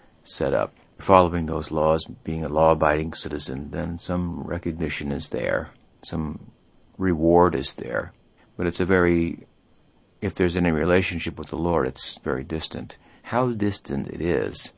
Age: 50-69